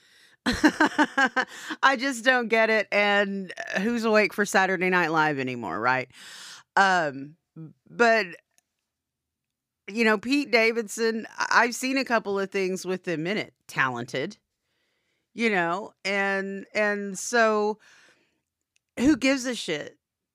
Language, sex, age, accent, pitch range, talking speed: English, female, 40-59, American, 165-220 Hz, 120 wpm